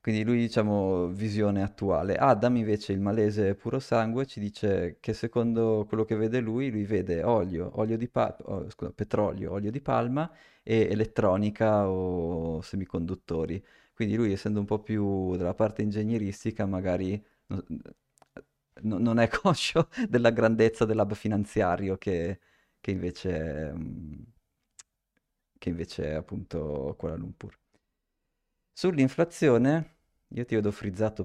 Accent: native